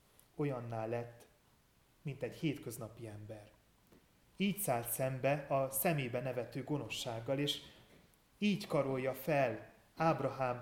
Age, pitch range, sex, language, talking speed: 30-49, 115-150 Hz, male, Hungarian, 100 wpm